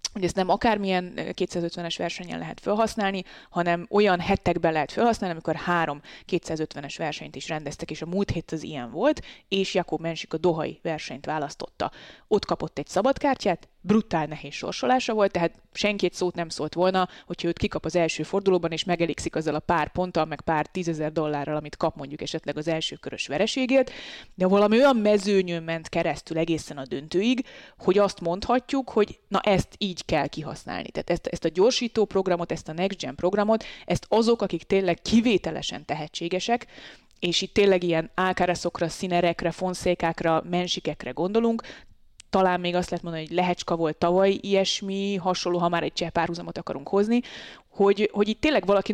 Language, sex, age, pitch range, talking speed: Hungarian, female, 20-39, 165-205 Hz, 170 wpm